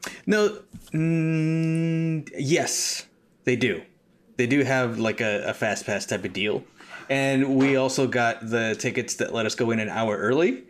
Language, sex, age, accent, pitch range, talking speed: English, male, 30-49, American, 125-170 Hz, 170 wpm